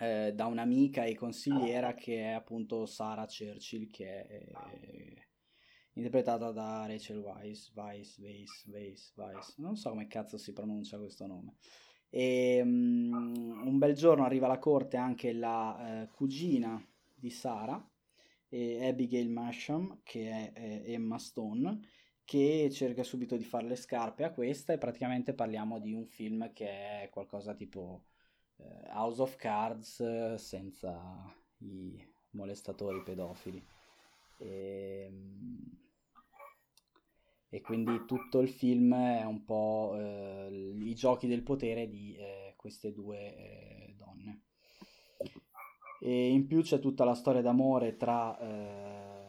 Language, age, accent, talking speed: Italian, 20-39, native, 130 wpm